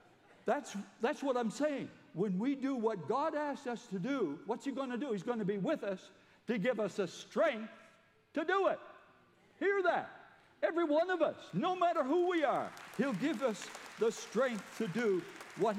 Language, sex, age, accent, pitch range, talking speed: English, male, 60-79, American, 165-240 Hz, 200 wpm